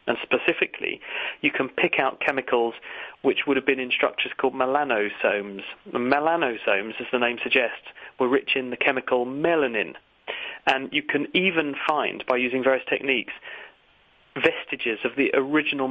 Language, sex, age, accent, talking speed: English, male, 40-59, British, 150 wpm